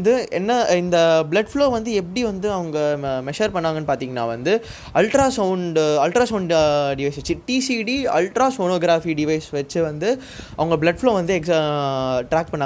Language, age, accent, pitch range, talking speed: Tamil, 20-39, native, 160-220 Hz, 45 wpm